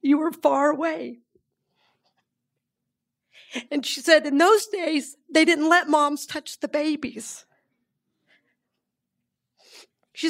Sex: female